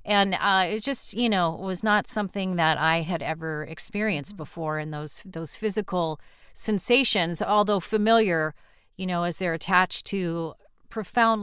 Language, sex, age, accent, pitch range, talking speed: English, female, 40-59, American, 160-200 Hz, 150 wpm